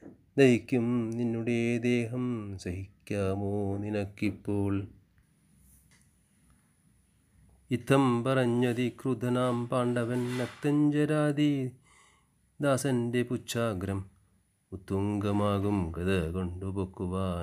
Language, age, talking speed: Malayalam, 30-49, 50 wpm